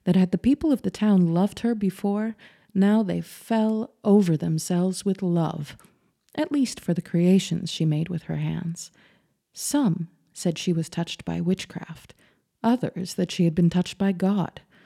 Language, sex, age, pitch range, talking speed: English, female, 30-49, 170-210 Hz, 170 wpm